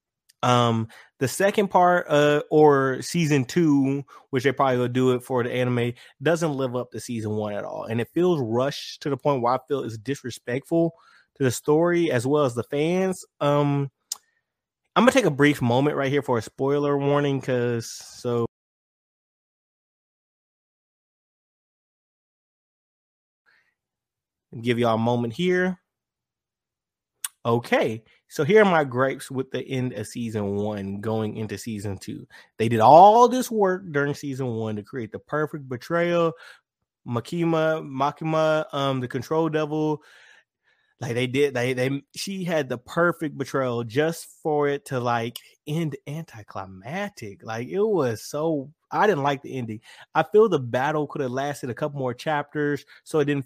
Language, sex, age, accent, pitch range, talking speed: English, male, 20-39, American, 120-155 Hz, 160 wpm